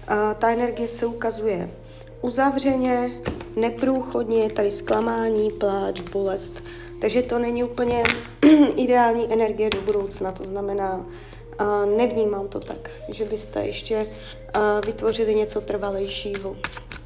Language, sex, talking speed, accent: Czech, female, 110 wpm, native